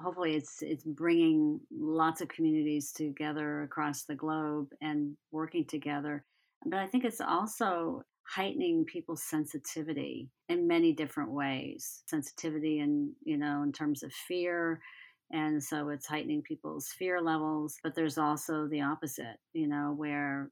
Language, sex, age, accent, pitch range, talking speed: English, female, 40-59, American, 150-165 Hz, 145 wpm